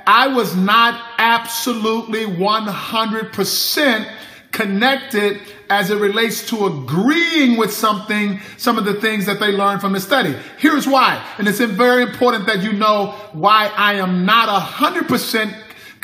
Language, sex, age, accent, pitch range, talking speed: English, male, 50-69, American, 205-260 Hz, 140 wpm